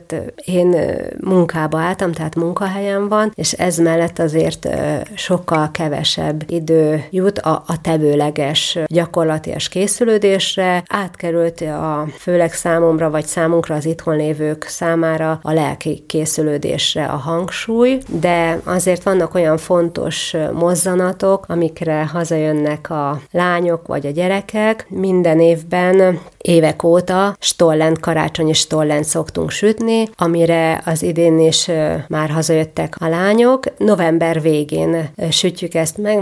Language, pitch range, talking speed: Hungarian, 160-180 Hz, 115 wpm